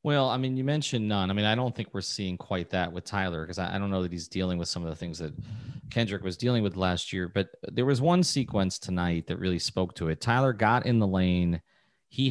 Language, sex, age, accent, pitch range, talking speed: English, male, 30-49, American, 95-115 Hz, 265 wpm